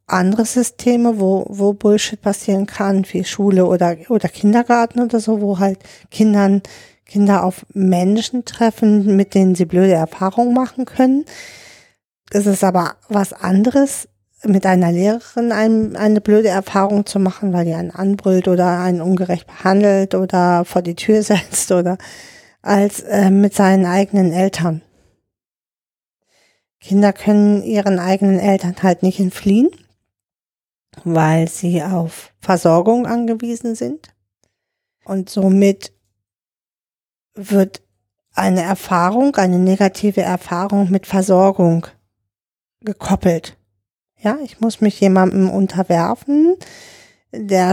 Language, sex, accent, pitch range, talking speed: German, female, German, 180-210 Hz, 120 wpm